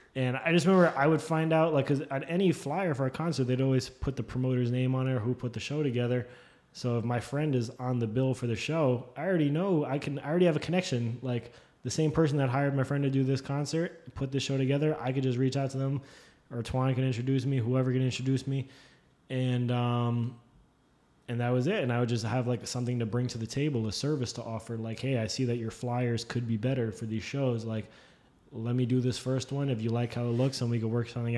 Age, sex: 20-39, male